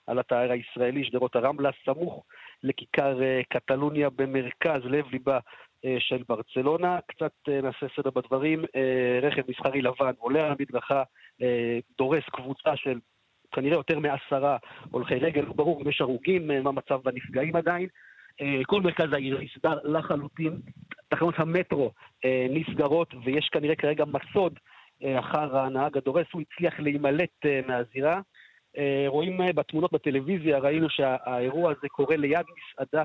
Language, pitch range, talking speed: Hebrew, 130-160 Hz, 120 wpm